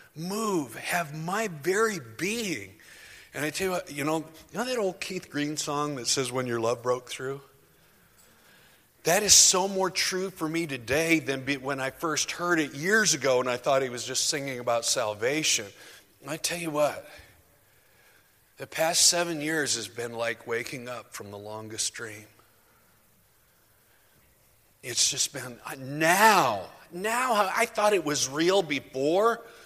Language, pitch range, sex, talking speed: English, 125-170 Hz, male, 160 wpm